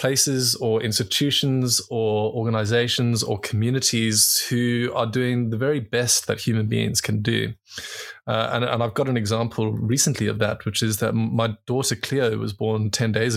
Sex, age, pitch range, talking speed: male, 20-39, 110-125 Hz, 170 wpm